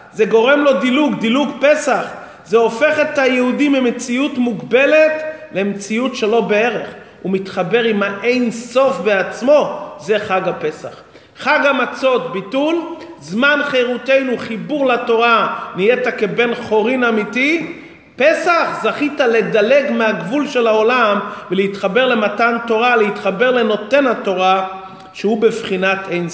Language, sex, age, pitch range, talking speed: Hebrew, male, 40-59, 205-255 Hz, 115 wpm